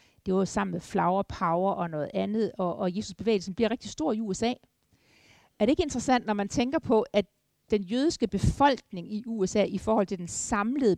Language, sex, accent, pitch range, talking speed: Danish, female, native, 185-230 Hz, 210 wpm